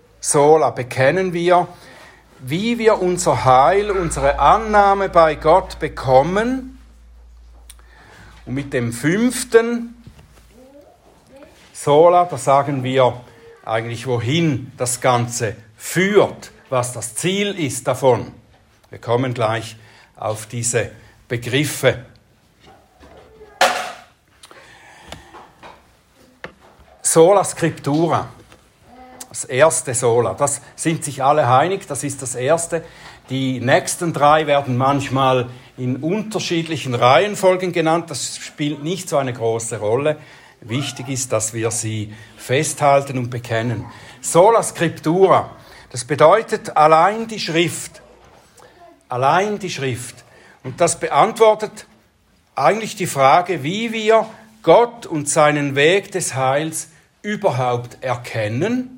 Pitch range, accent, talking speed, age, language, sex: 125-180 Hz, German, 100 wpm, 60-79, German, male